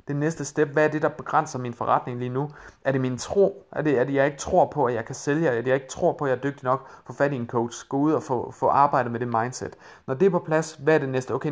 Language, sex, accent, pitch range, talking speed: Danish, male, native, 120-145 Hz, 330 wpm